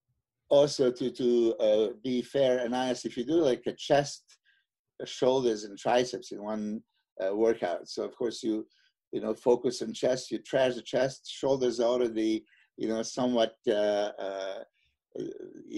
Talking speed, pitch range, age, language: 160 wpm, 110-130 Hz, 50-69, English